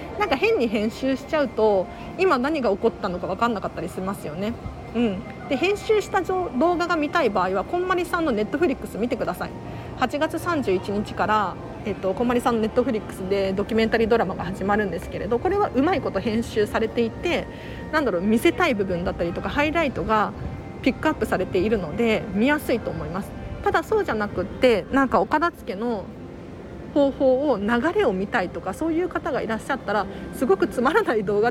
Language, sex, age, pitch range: Japanese, female, 40-59, 205-325 Hz